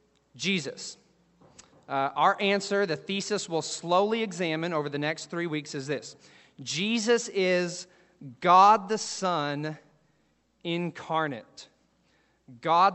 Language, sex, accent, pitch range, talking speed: English, male, American, 155-195 Hz, 105 wpm